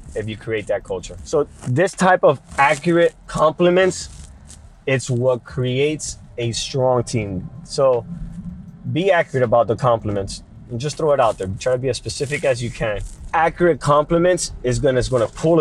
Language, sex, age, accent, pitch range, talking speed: English, male, 20-39, American, 115-155 Hz, 165 wpm